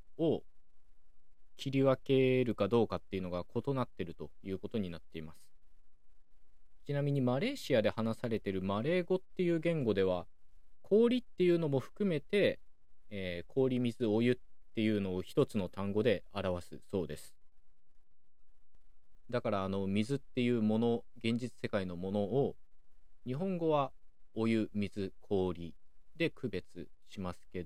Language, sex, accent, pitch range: Japanese, male, native, 90-125 Hz